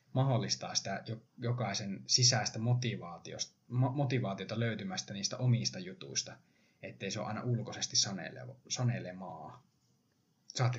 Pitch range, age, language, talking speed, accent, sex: 100-125 Hz, 20-39, Finnish, 90 wpm, native, male